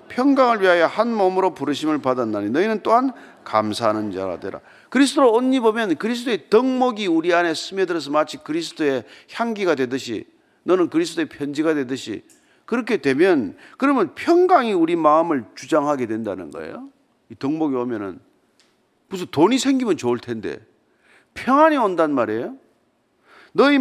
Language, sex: Korean, male